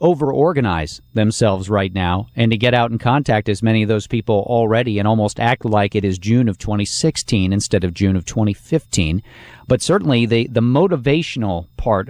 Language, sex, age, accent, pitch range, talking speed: English, male, 50-69, American, 105-130 Hz, 180 wpm